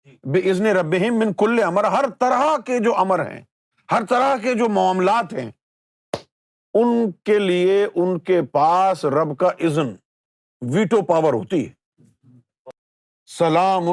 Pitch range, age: 155-215 Hz, 50-69